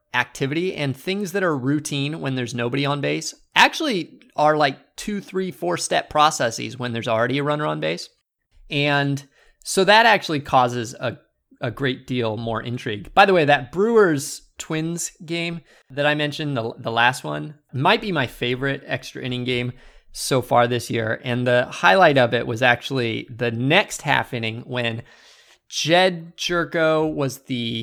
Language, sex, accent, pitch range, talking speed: English, male, American, 125-165 Hz, 170 wpm